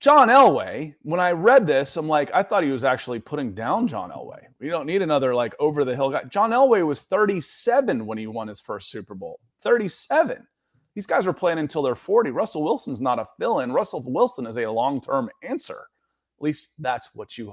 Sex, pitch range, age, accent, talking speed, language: male, 135-195 Hz, 30-49, American, 200 wpm, English